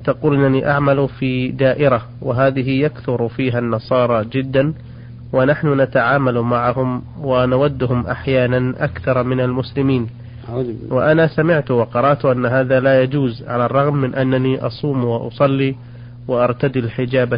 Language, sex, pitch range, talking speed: Arabic, male, 120-140 Hz, 115 wpm